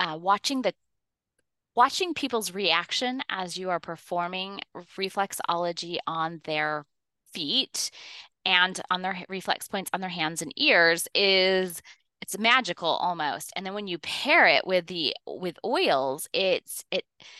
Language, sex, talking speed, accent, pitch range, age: English, female, 140 wpm, American, 170-205 Hz, 20-39